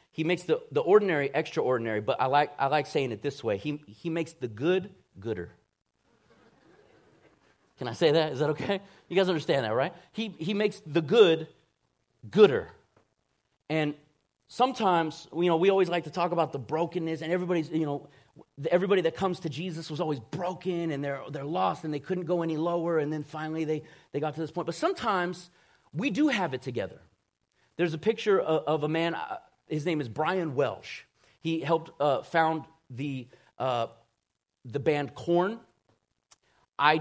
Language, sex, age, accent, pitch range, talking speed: English, male, 30-49, American, 145-180 Hz, 180 wpm